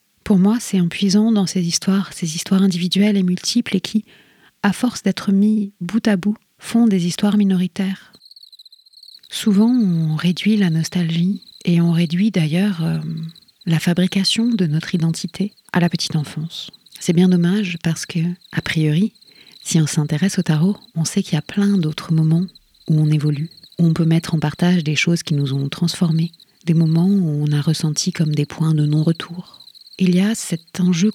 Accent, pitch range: French, 165-200 Hz